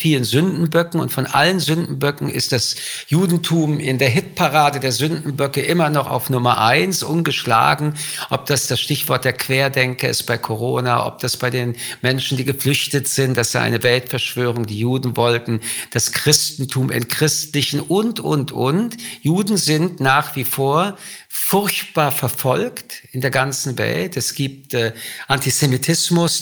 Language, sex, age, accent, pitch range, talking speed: German, male, 50-69, German, 125-155 Hz, 150 wpm